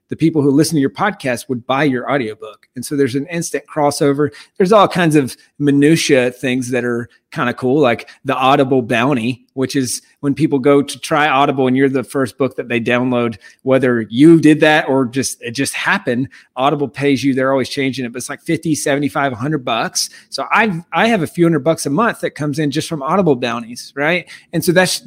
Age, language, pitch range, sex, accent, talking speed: 30-49, English, 135-165 Hz, male, American, 220 wpm